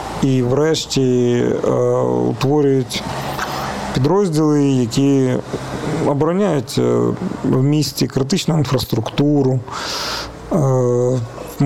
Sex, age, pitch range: male, 40-59, 125-155 Hz